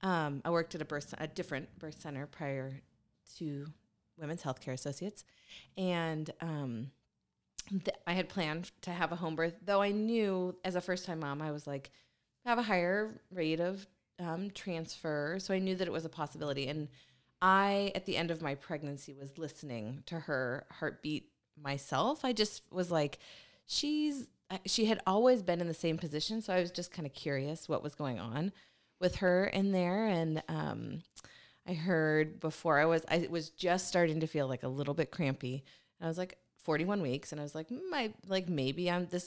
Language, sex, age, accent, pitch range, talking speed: English, female, 20-39, American, 145-190 Hz, 195 wpm